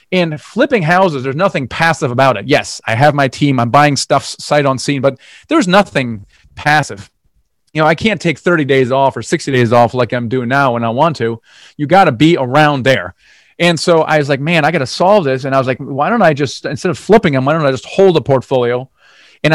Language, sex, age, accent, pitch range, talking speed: English, male, 30-49, American, 130-170 Hz, 245 wpm